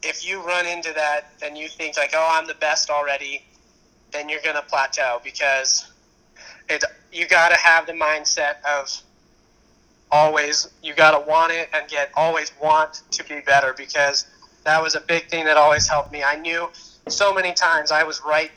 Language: English